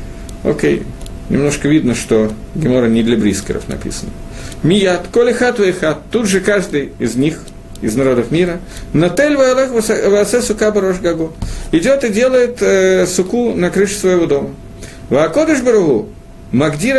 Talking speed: 130 wpm